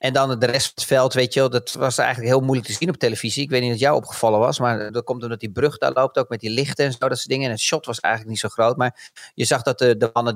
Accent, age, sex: Dutch, 40-59, male